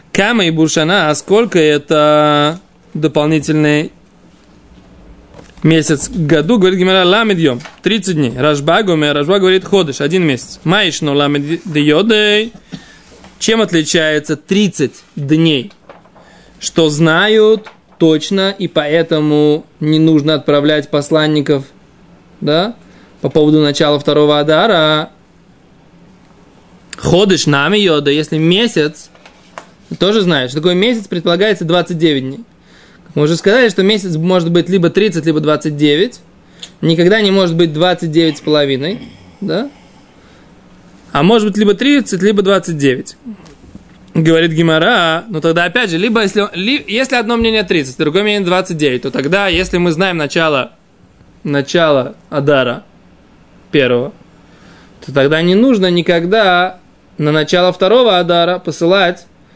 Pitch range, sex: 150-195 Hz, male